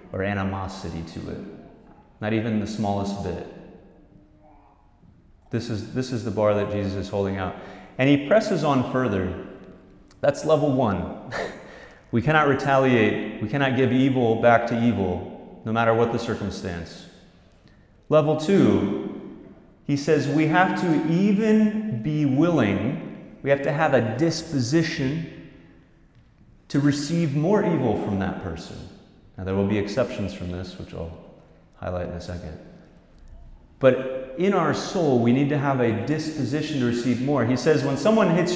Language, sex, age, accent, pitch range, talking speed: English, male, 30-49, American, 105-150 Hz, 150 wpm